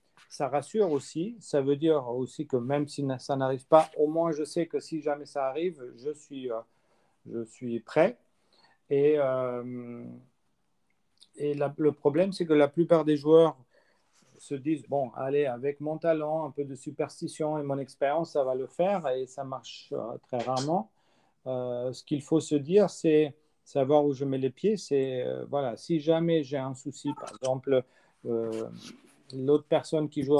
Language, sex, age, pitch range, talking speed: French, male, 40-59, 130-160 Hz, 180 wpm